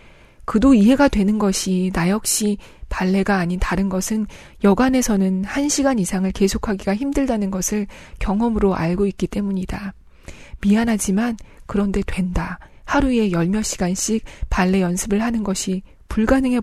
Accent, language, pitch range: native, Korean, 190-230 Hz